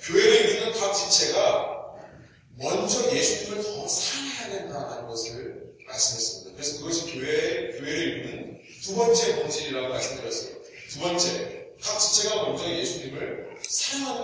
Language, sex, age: Korean, male, 40-59